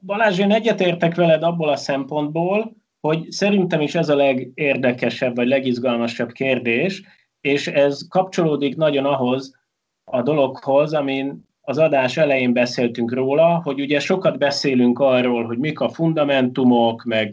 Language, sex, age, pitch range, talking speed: Hungarian, male, 30-49, 125-170 Hz, 135 wpm